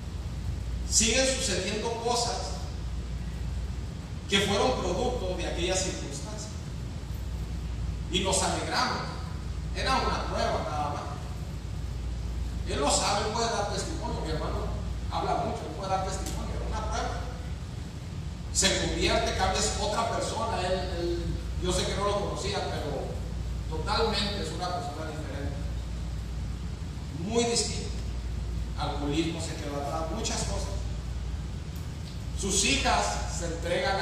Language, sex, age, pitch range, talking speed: Spanish, male, 40-59, 80-90 Hz, 115 wpm